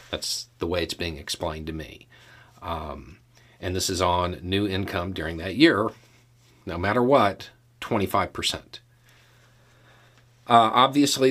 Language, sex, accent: English, male, American